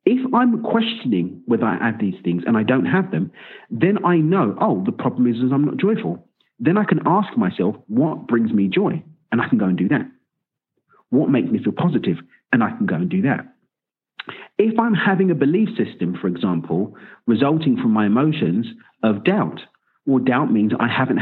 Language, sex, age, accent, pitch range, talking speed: English, male, 40-59, British, 115-180 Hz, 205 wpm